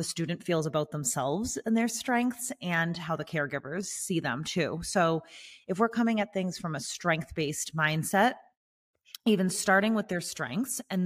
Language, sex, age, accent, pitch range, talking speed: English, female, 30-49, American, 160-205 Hz, 170 wpm